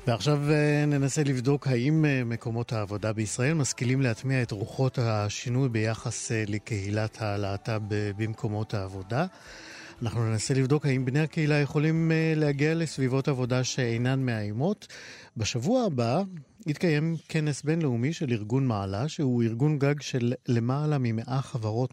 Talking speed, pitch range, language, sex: 120 wpm, 115-155 Hz, Hebrew, male